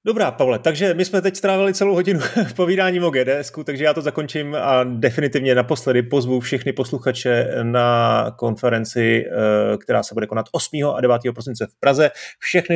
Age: 30-49